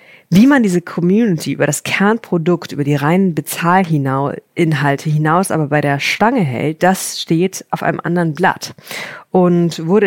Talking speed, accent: 150 wpm, German